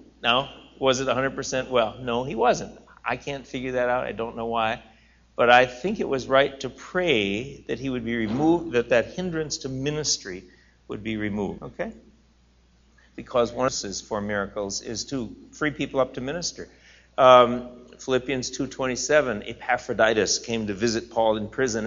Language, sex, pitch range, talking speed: English, male, 110-155 Hz, 170 wpm